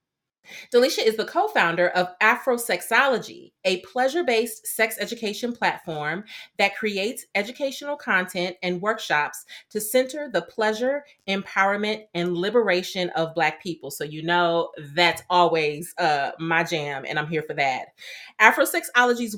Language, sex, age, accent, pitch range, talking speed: English, female, 30-49, American, 175-240 Hz, 125 wpm